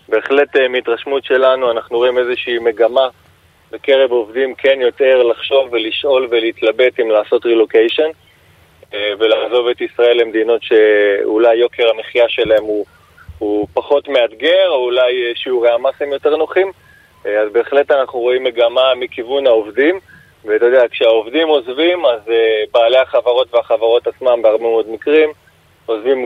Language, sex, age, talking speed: Hebrew, male, 20-39, 130 wpm